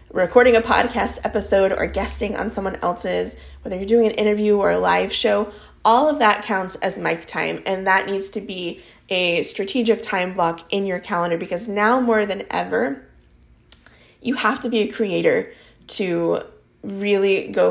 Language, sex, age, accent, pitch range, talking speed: English, female, 20-39, American, 175-225 Hz, 175 wpm